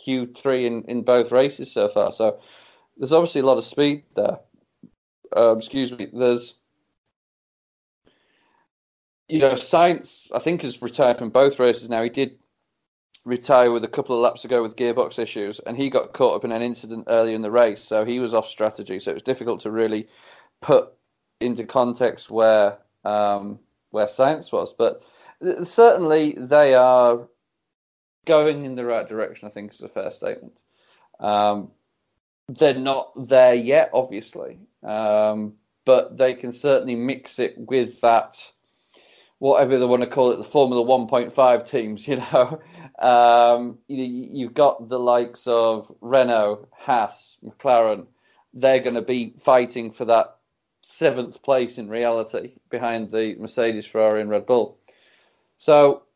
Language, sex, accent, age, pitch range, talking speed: English, male, British, 30-49, 115-135 Hz, 150 wpm